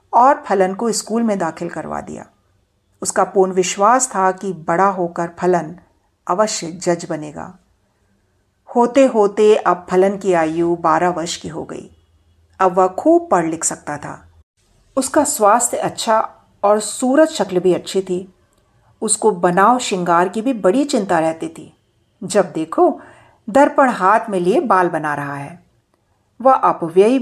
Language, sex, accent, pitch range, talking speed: Hindi, female, native, 170-240 Hz, 150 wpm